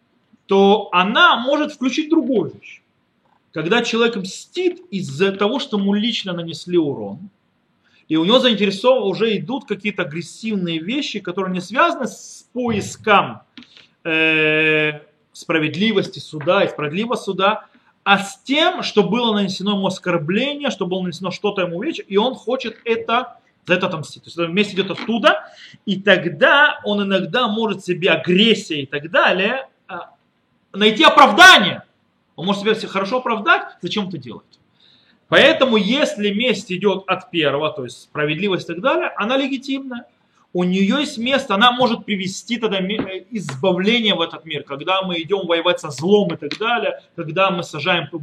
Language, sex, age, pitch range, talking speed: Russian, male, 30-49, 170-235 Hz, 150 wpm